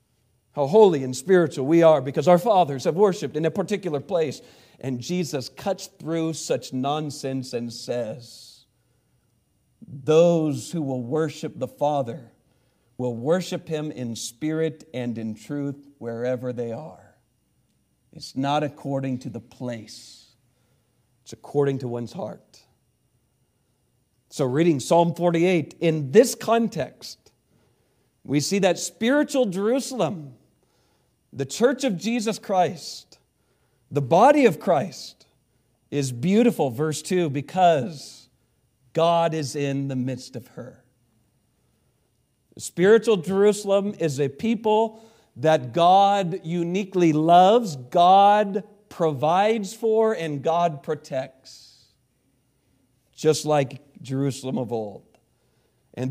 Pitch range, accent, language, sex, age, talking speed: 125-180 Hz, American, English, male, 50-69, 110 wpm